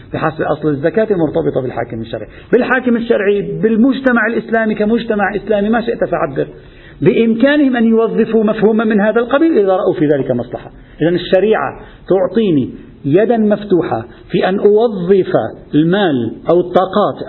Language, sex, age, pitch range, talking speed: Arabic, male, 50-69, 160-245 Hz, 130 wpm